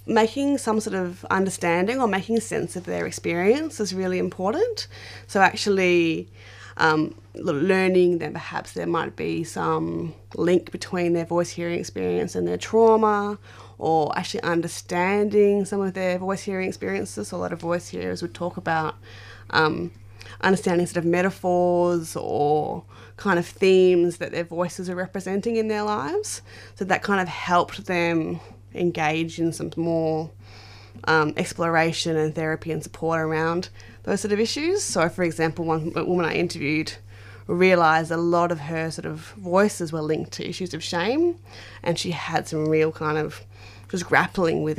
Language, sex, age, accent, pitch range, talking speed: English, female, 20-39, Australian, 145-185 Hz, 160 wpm